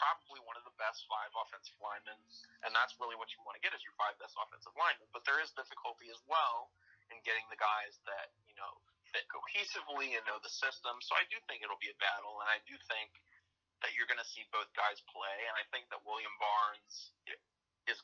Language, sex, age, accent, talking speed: English, male, 30-49, American, 225 wpm